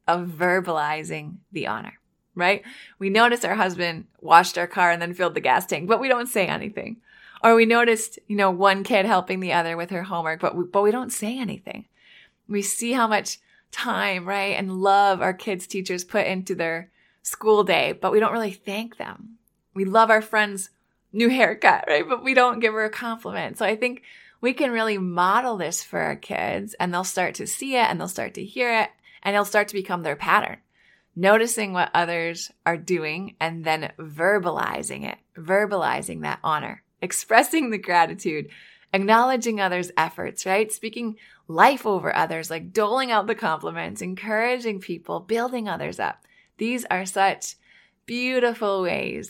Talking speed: 180 wpm